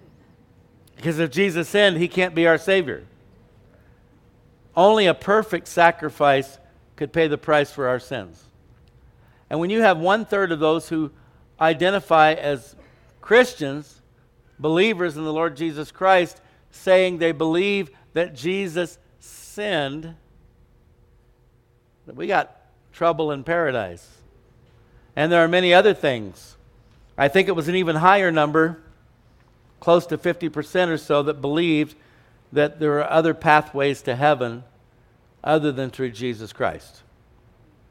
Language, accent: English, American